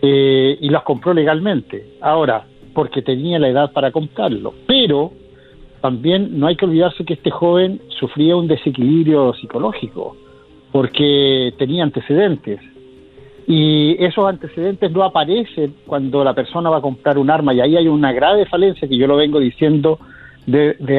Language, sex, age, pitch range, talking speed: Spanish, male, 50-69, 135-180 Hz, 155 wpm